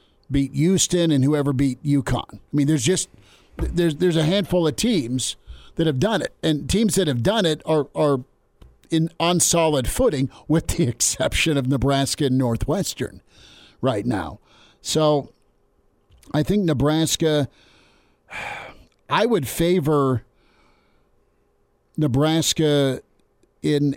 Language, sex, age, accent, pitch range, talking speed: English, male, 50-69, American, 130-150 Hz, 125 wpm